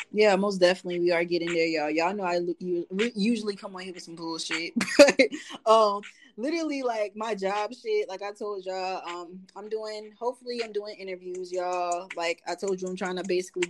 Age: 20-39